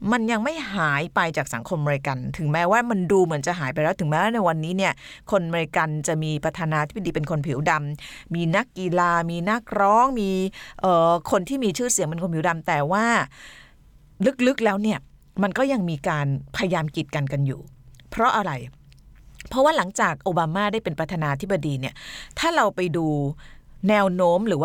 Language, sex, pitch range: Thai, female, 145-200 Hz